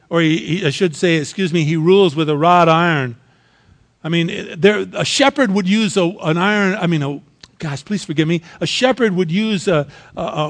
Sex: male